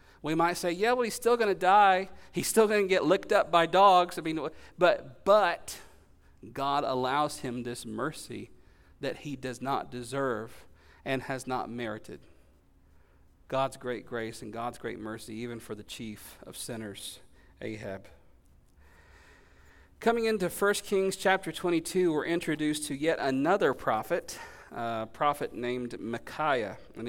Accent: American